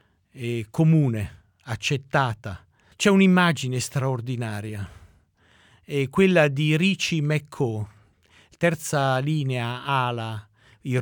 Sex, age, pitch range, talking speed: male, 50-69, 115-170 Hz, 75 wpm